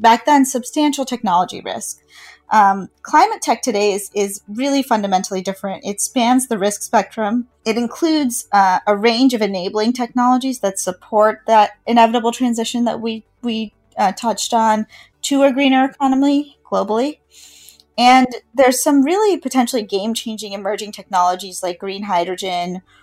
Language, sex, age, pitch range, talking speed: English, female, 30-49, 195-240 Hz, 140 wpm